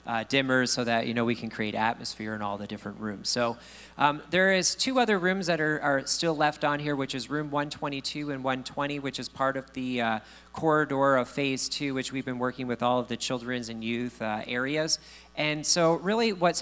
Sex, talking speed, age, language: male, 225 wpm, 40-59, English